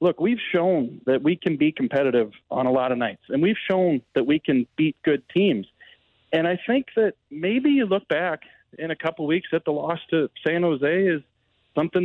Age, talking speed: 40-59, 210 wpm